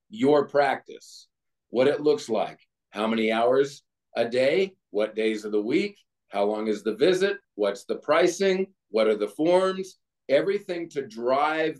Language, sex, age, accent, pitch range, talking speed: English, male, 40-59, American, 125-180 Hz, 160 wpm